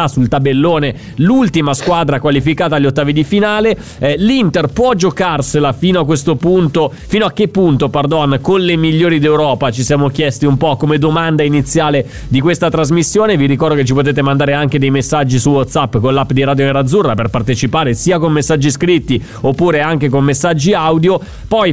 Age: 30-49